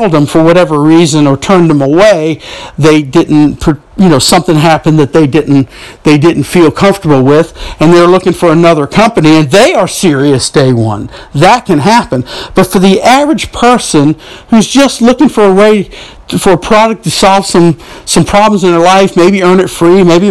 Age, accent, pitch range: 50-69, American, 160-220 Hz